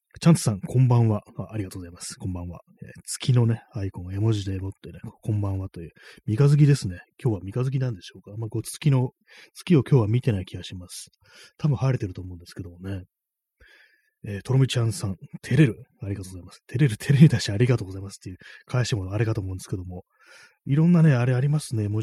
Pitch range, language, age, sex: 95-140 Hz, Japanese, 20-39, male